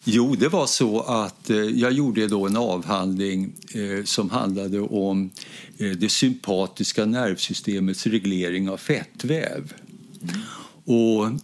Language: Swedish